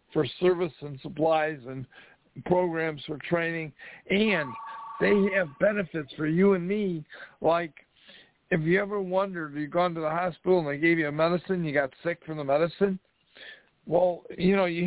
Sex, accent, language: male, American, English